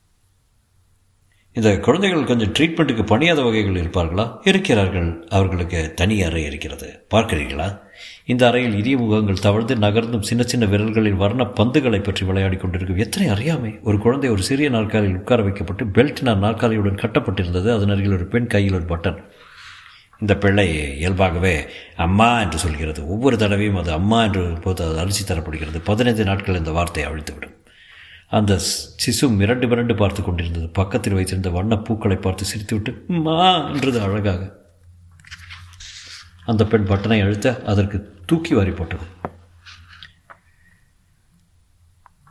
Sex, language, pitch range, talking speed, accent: male, Tamil, 90-115 Hz, 115 wpm, native